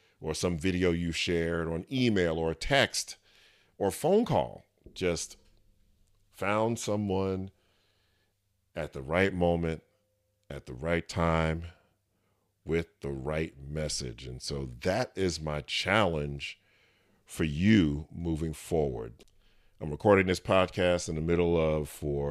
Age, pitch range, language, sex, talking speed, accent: 40-59, 80-100 Hz, English, male, 130 wpm, American